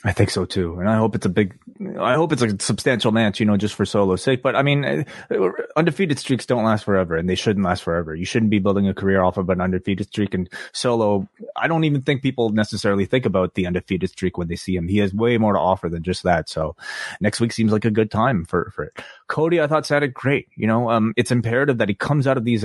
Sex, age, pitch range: male, 30-49, 100-125 Hz